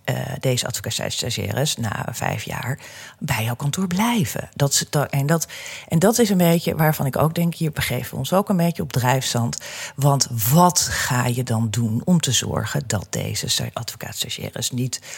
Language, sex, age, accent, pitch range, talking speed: Dutch, female, 40-59, Dutch, 115-150 Hz, 165 wpm